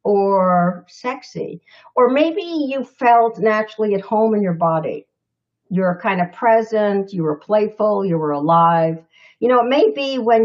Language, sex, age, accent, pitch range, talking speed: English, female, 60-79, American, 170-220 Hz, 160 wpm